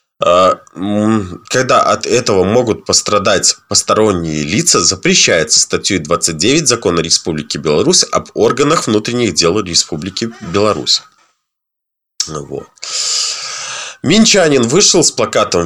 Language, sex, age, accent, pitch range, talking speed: Russian, male, 20-39, native, 90-130 Hz, 90 wpm